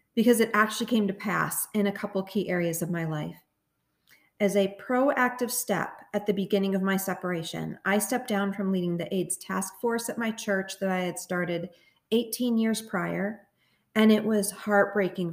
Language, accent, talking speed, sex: English, American, 185 wpm, female